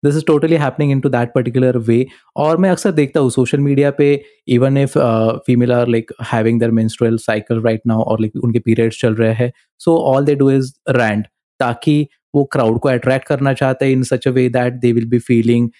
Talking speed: 150 wpm